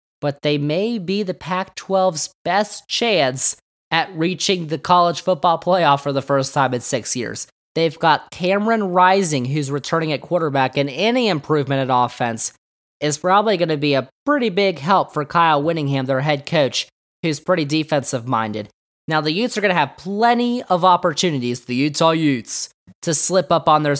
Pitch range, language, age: 135-180 Hz, English, 20-39